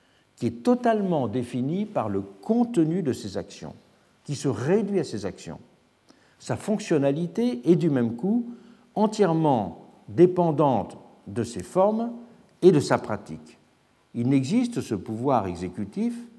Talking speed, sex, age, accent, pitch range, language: 130 wpm, male, 60-79, French, 115-185 Hz, French